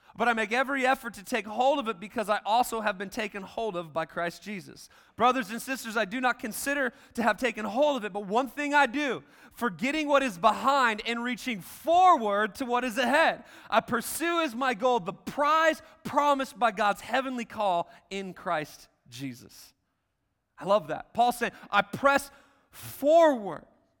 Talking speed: 180 wpm